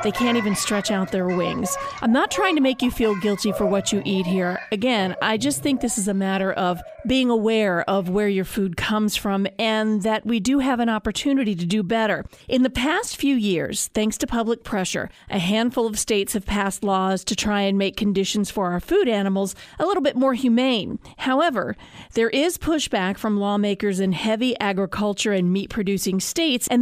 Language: English